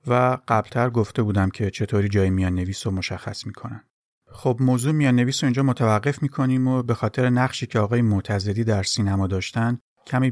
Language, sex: English, male